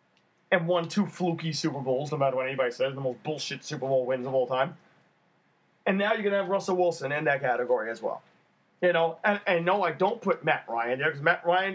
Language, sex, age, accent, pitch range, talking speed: English, male, 30-49, American, 150-185 Hz, 235 wpm